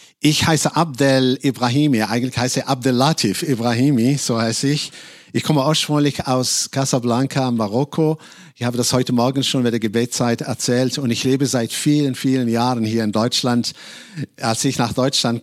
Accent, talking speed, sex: German, 165 wpm, male